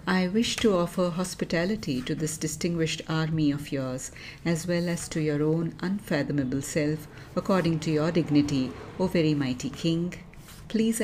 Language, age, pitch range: English, 50-69, 135-165 Hz